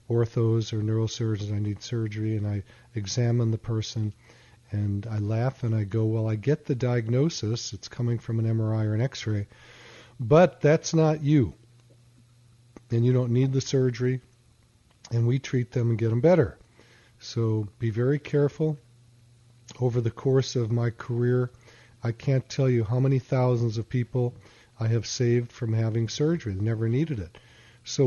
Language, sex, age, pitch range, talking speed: English, male, 50-69, 110-125 Hz, 165 wpm